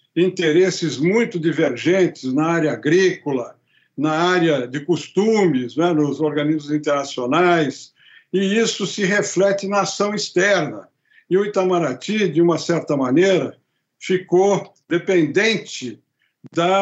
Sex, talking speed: male, 110 wpm